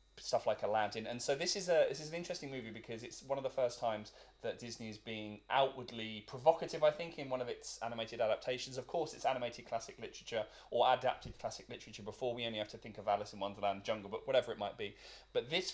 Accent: British